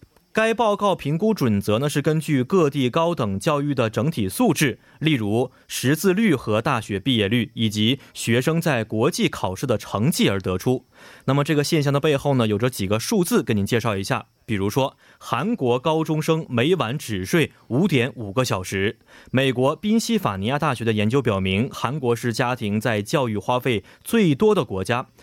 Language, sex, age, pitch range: Korean, male, 20-39, 110-155 Hz